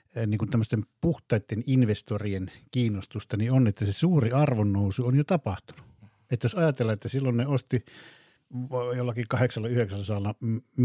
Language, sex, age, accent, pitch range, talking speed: Finnish, male, 50-69, native, 105-130 Hz, 125 wpm